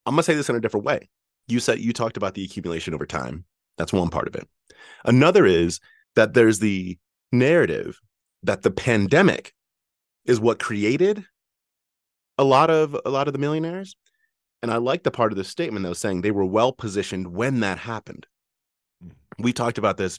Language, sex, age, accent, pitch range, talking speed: English, male, 30-49, American, 90-120 Hz, 185 wpm